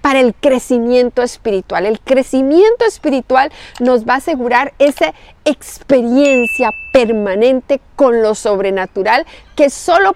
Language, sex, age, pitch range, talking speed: Spanish, female, 40-59, 235-310 Hz, 110 wpm